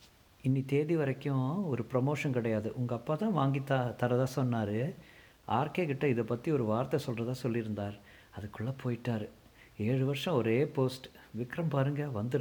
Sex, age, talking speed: male, 50-69, 145 wpm